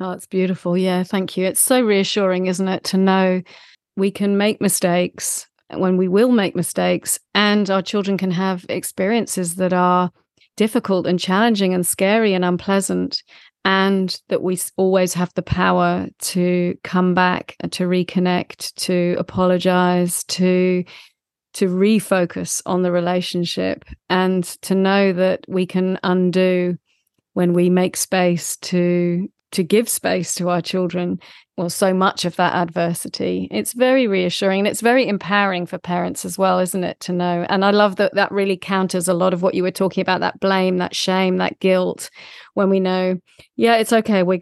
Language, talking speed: English, 170 wpm